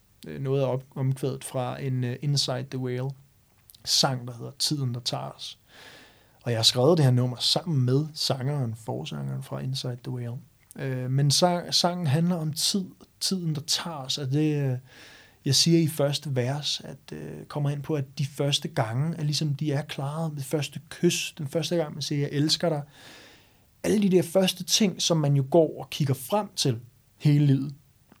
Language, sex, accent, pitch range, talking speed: Danish, male, native, 130-165 Hz, 175 wpm